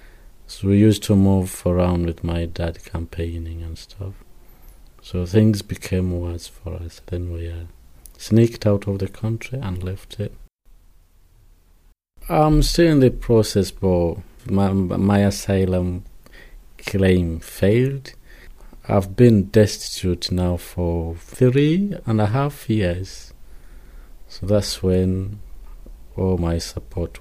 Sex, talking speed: male, 125 wpm